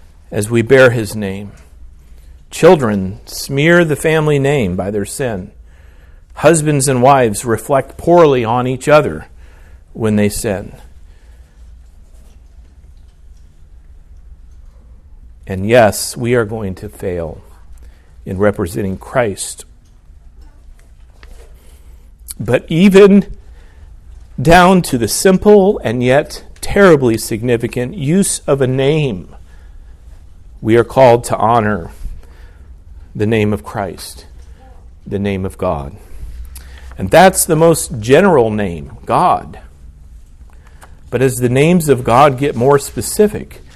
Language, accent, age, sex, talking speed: English, American, 50-69, male, 105 wpm